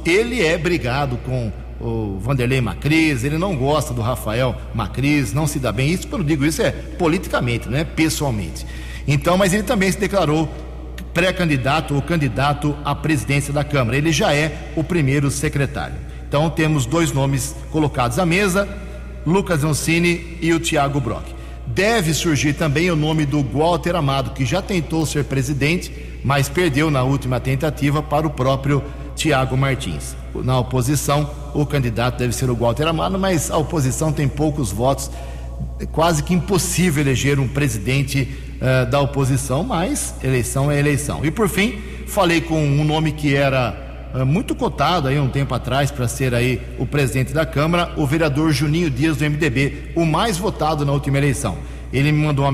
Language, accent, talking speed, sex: Portuguese, Brazilian, 165 wpm, male